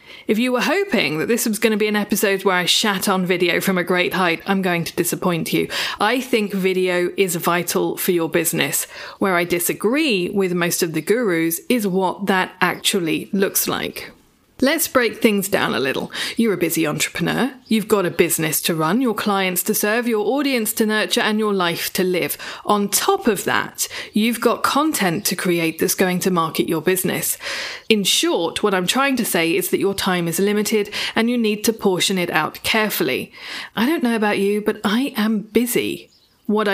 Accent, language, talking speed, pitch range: British, English, 200 wpm, 180-225 Hz